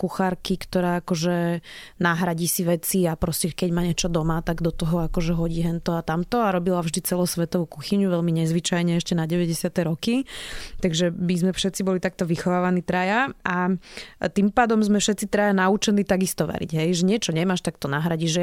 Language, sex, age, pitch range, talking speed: Slovak, female, 20-39, 170-185 Hz, 180 wpm